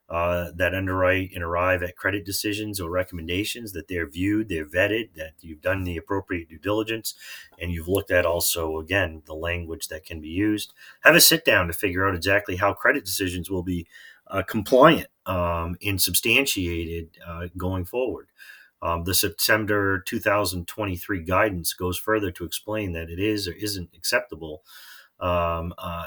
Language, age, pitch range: English, 30-49, 85-100 Hz